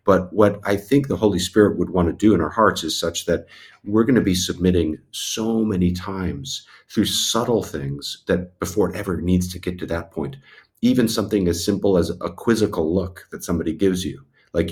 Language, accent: English, American